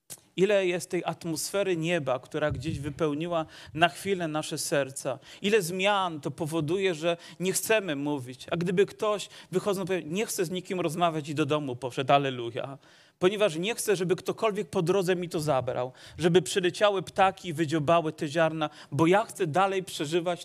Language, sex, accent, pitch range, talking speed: Polish, male, native, 145-175 Hz, 165 wpm